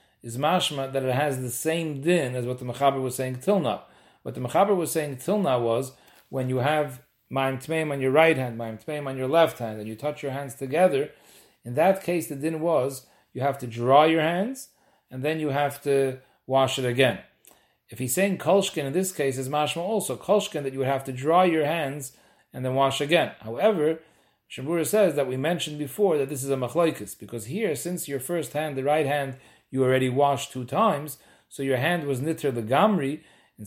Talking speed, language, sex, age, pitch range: 215 wpm, English, male, 40-59, 130-160 Hz